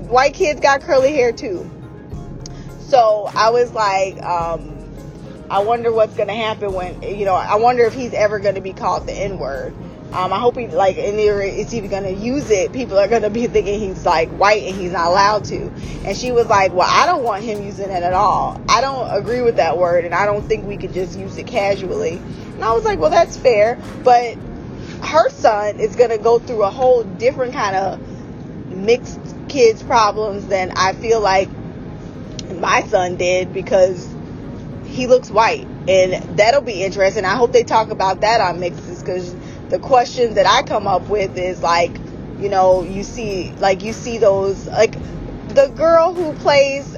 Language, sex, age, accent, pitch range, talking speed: English, female, 20-39, American, 190-250 Hz, 200 wpm